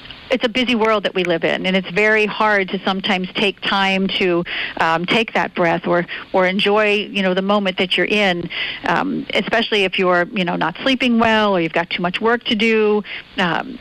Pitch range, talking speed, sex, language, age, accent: 180-215 Hz, 215 wpm, female, English, 50-69, American